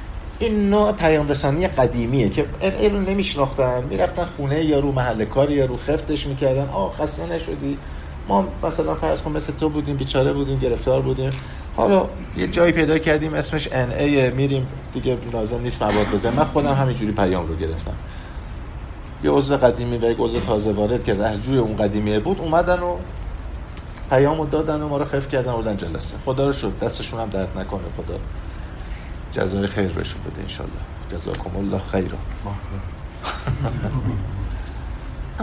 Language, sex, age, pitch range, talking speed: Persian, male, 50-69, 90-140 Hz, 150 wpm